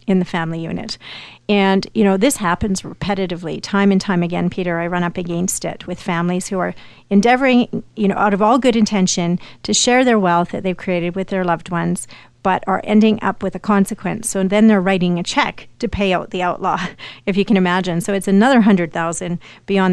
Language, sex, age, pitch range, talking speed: English, female, 40-59, 175-210 Hz, 215 wpm